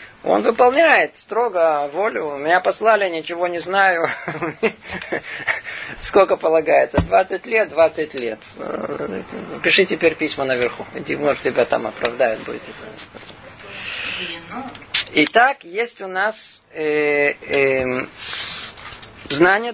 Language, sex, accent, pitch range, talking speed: Russian, male, native, 150-195 Hz, 90 wpm